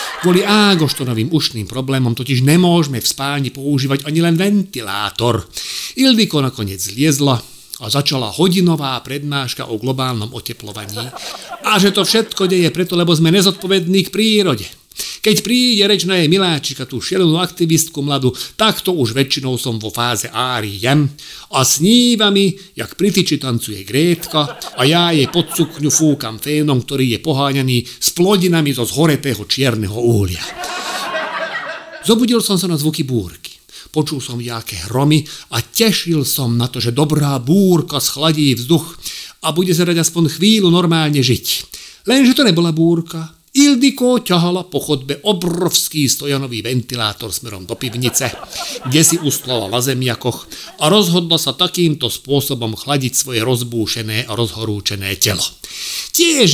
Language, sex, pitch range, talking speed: Slovak, male, 125-175 Hz, 140 wpm